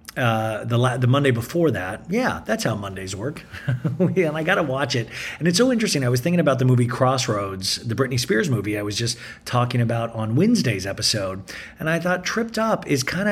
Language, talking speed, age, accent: English, 215 wpm, 40-59, American